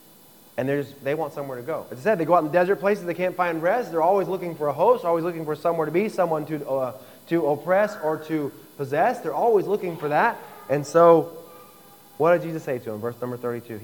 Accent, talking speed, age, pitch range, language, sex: American, 245 wpm, 20-39, 135-185 Hz, Spanish, male